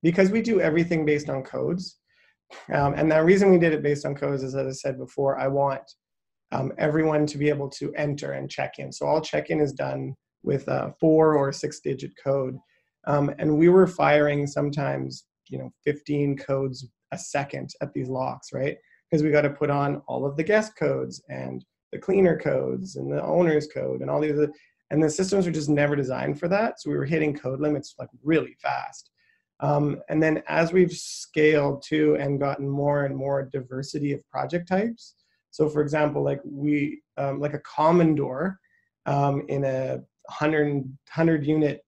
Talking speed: 190 wpm